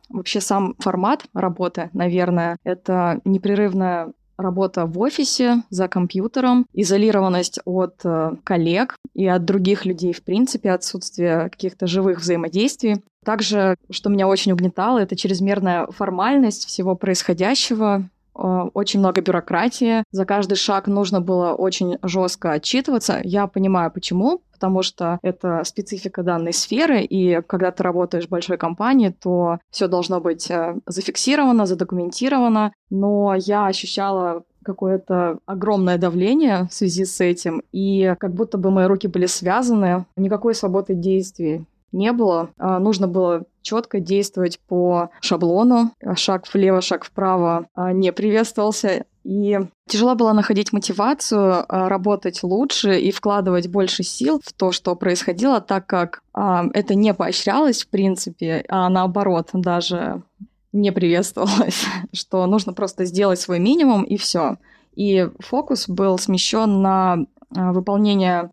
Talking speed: 125 wpm